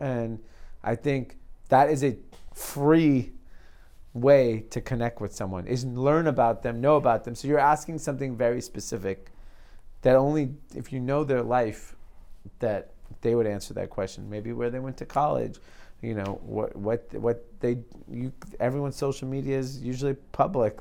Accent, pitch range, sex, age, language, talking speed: American, 105-135 Hz, male, 30-49, English, 165 wpm